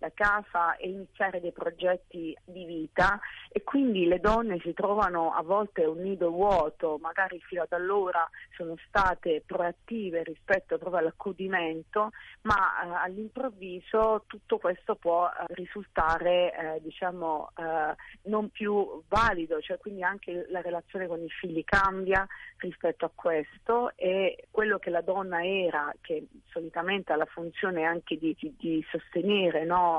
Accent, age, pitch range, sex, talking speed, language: native, 40-59, 165-195 Hz, female, 140 wpm, Italian